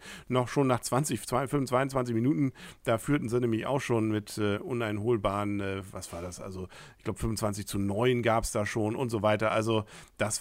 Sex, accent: male, German